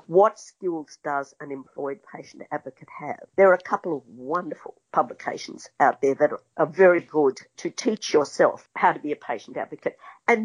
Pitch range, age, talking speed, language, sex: 155-225 Hz, 50-69, 185 wpm, English, female